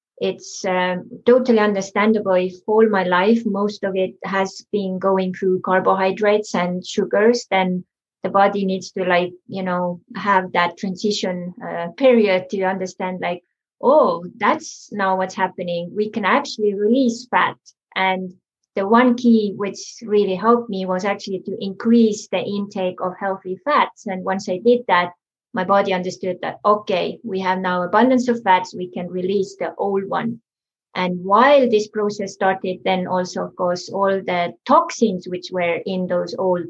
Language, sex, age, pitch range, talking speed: English, female, 20-39, 185-215 Hz, 165 wpm